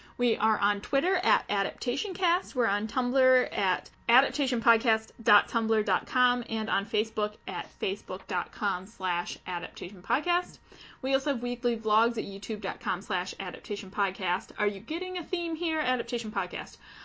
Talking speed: 120 wpm